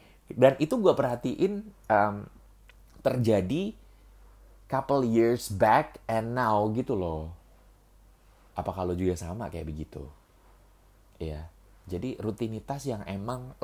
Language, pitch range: Indonesian, 85-110 Hz